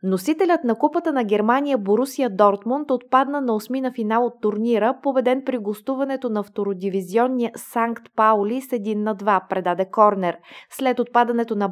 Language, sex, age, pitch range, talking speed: Bulgarian, female, 20-39, 200-250 Hz, 150 wpm